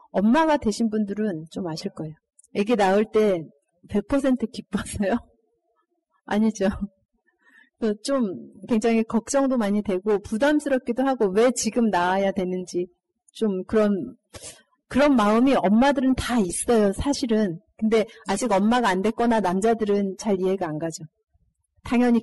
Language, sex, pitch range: Korean, female, 195-250 Hz